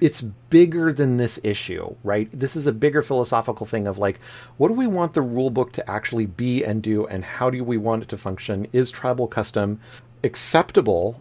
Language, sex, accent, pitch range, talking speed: English, male, American, 105-130 Hz, 200 wpm